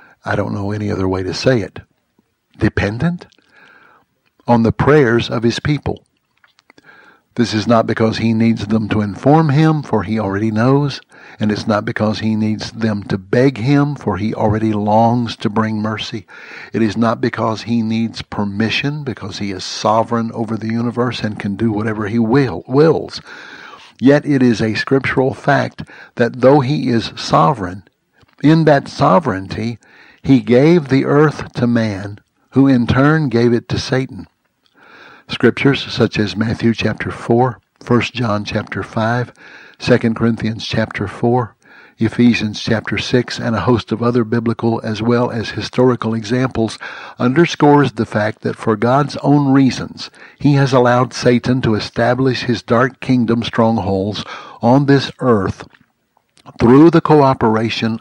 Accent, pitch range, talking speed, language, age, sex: American, 110-130 Hz, 150 wpm, English, 60-79, male